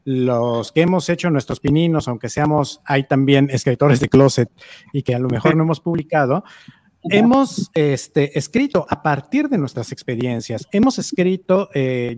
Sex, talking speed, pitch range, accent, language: male, 160 wpm, 125-165 Hz, Mexican, Spanish